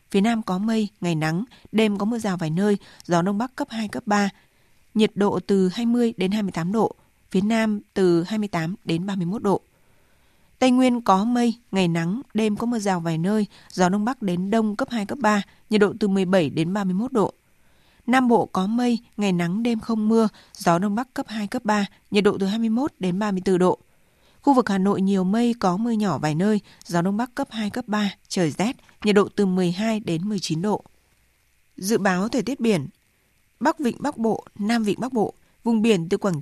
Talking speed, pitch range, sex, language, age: 210 wpm, 185-225 Hz, female, Vietnamese, 20-39